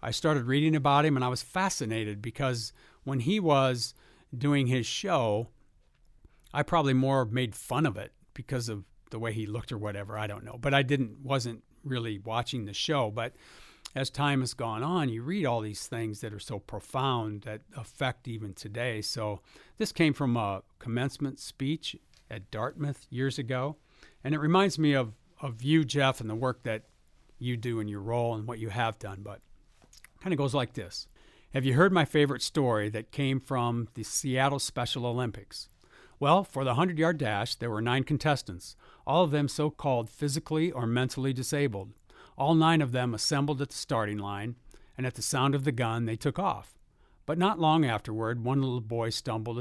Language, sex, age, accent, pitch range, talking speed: English, male, 60-79, American, 110-140 Hz, 190 wpm